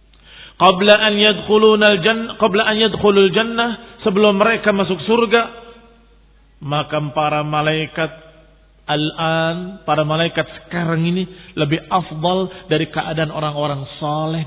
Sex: male